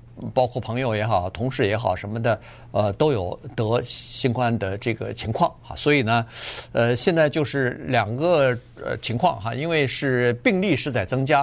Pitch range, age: 115-150 Hz, 50-69